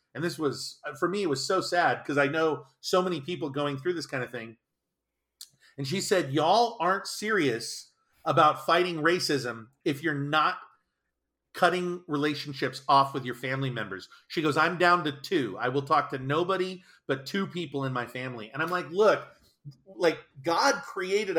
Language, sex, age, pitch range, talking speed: English, male, 40-59, 140-180 Hz, 180 wpm